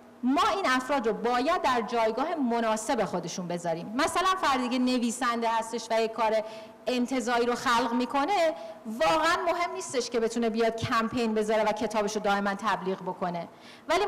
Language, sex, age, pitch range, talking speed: Persian, female, 40-59, 215-275 Hz, 160 wpm